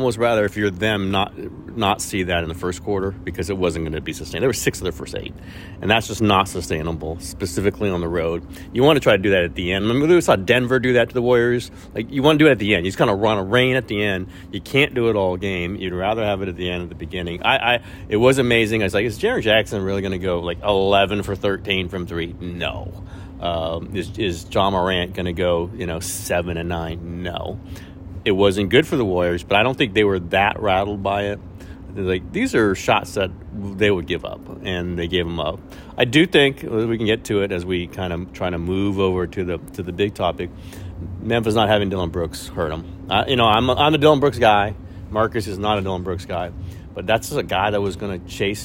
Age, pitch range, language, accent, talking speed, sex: 40-59, 90-105 Hz, English, American, 265 wpm, male